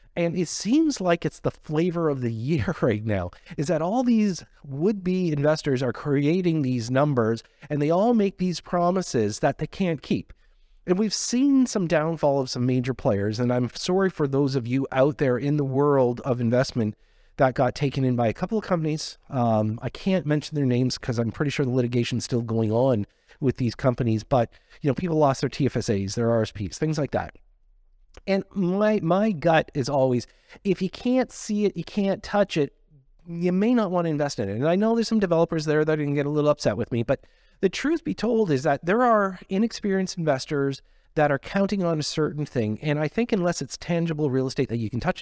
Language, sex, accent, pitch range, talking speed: English, male, American, 130-185 Hz, 215 wpm